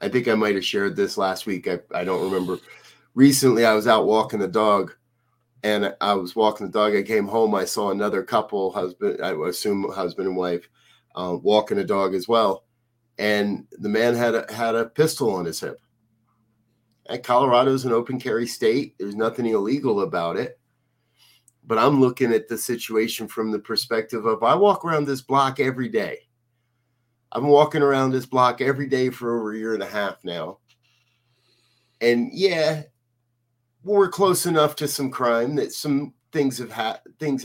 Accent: American